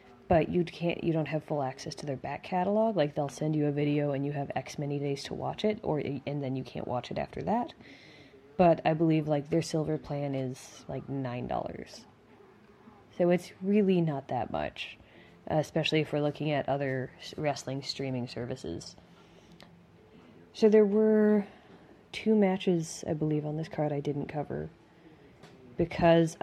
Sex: female